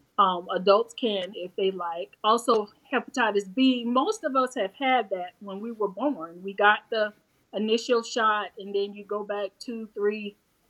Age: 30-49